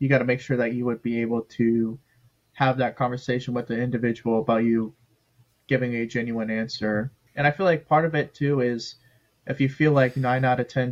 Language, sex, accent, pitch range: English, male, American, 120-135 Hz